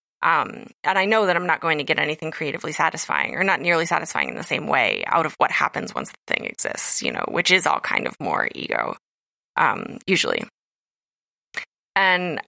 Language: English